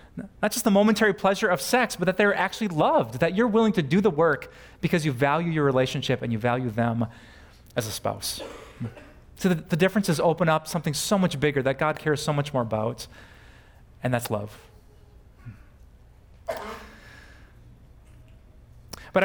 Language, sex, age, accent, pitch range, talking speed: English, male, 30-49, American, 125-170 Hz, 160 wpm